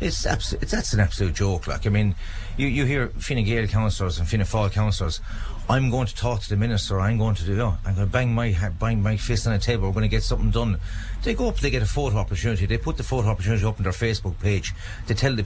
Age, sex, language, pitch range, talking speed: 40-59, male, English, 100-120 Hz, 275 wpm